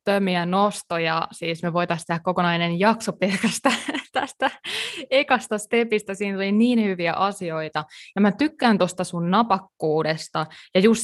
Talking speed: 135 wpm